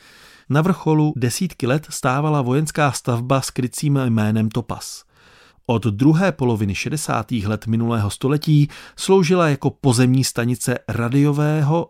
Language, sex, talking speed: Czech, male, 115 wpm